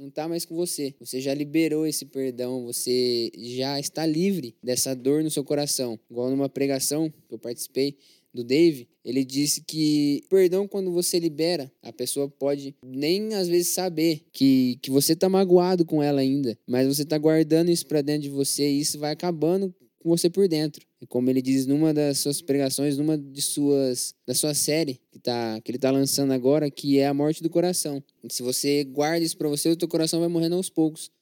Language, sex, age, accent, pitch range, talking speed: Portuguese, male, 10-29, Brazilian, 135-165 Hz, 210 wpm